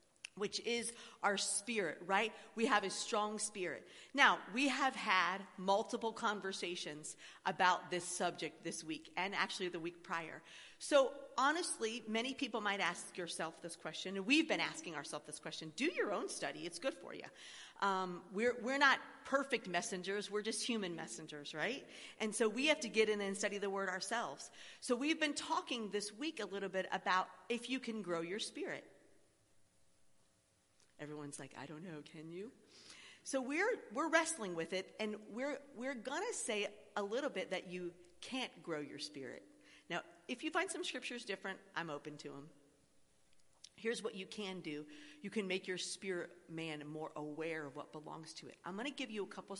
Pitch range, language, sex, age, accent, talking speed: 170-235 Hz, English, female, 40-59, American, 185 wpm